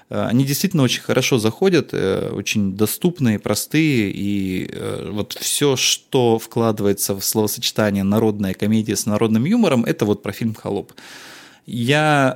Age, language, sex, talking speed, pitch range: 20-39, Russian, male, 125 wpm, 100-125 Hz